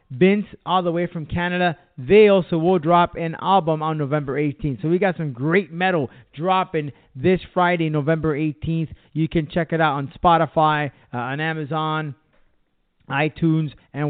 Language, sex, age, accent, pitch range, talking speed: English, male, 30-49, American, 155-200 Hz, 160 wpm